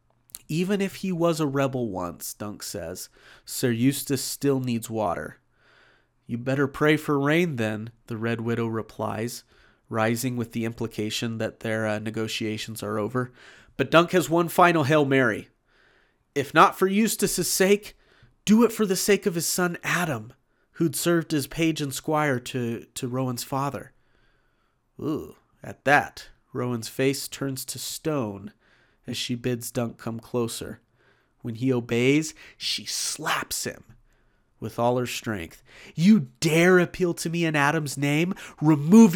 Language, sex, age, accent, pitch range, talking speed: English, male, 30-49, American, 120-170 Hz, 150 wpm